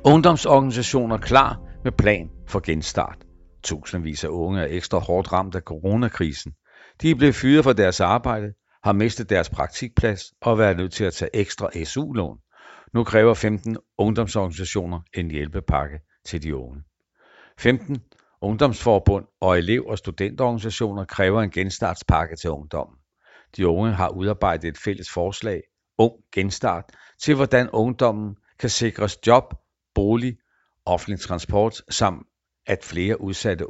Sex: male